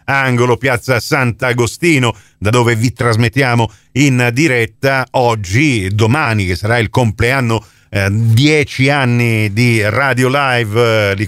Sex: male